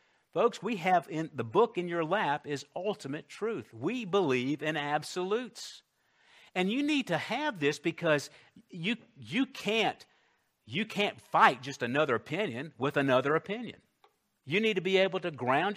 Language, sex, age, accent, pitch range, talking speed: English, male, 50-69, American, 135-210 Hz, 160 wpm